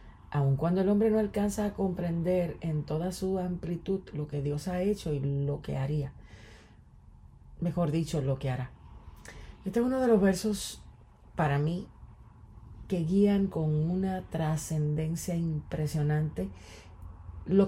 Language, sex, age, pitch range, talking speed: English, female, 40-59, 145-180 Hz, 140 wpm